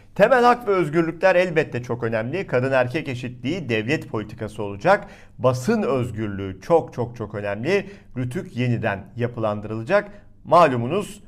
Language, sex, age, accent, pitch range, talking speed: Turkish, male, 50-69, native, 115-160 Hz, 120 wpm